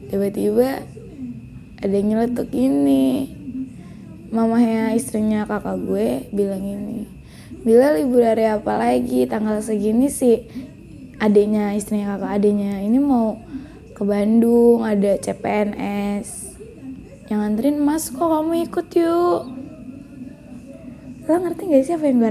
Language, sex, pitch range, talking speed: Indonesian, female, 205-260 Hz, 115 wpm